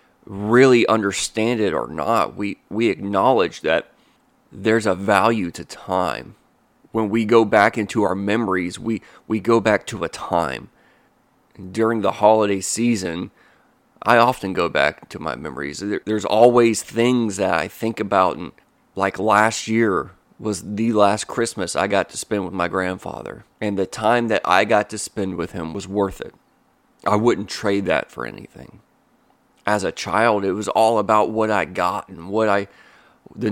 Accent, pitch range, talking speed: American, 100-115 Hz, 170 wpm